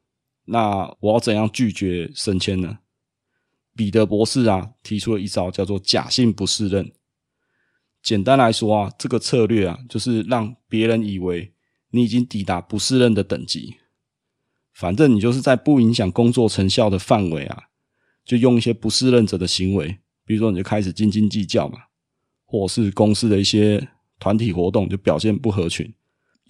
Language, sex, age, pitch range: Chinese, male, 20-39, 95-120 Hz